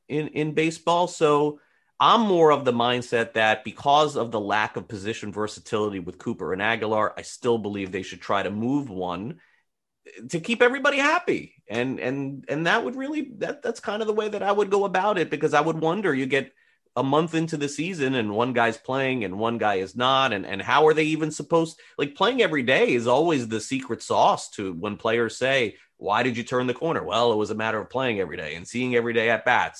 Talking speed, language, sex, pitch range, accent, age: 230 wpm, English, male, 105-145 Hz, American, 30-49